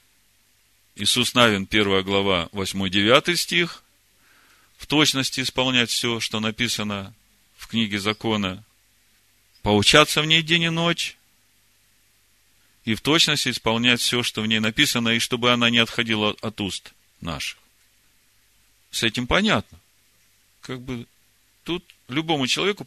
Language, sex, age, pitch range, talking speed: Russian, male, 40-59, 105-150 Hz, 120 wpm